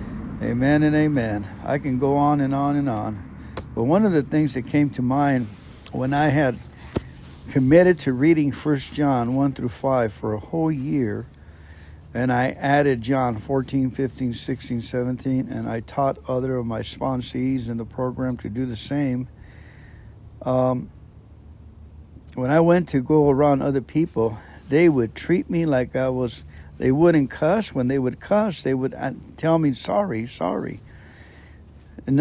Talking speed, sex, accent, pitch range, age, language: 160 wpm, male, American, 105-135 Hz, 60-79, English